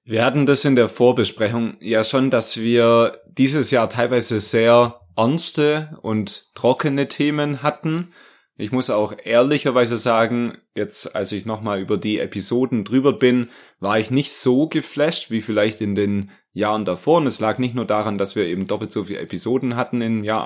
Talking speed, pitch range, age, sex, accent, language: 175 wpm, 105-125 Hz, 20-39, male, German, German